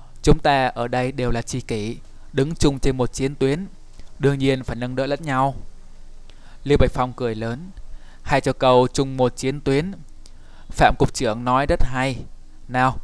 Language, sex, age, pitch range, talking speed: Vietnamese, male, 20-39, 120-140 Hz, 185 wpm